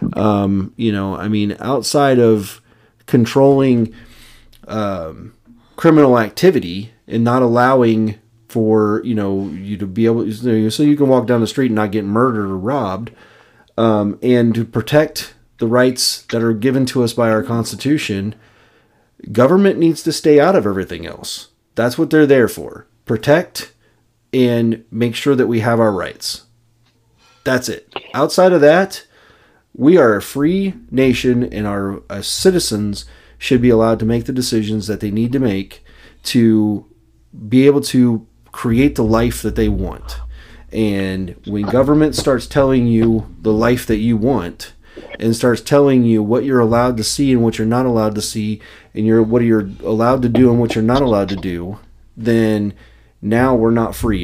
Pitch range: 105-125 Hz